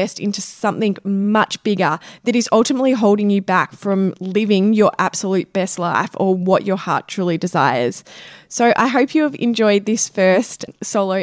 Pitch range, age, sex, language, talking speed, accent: 185-225 Hz, 20-39, female, English, 165 wpm, Australian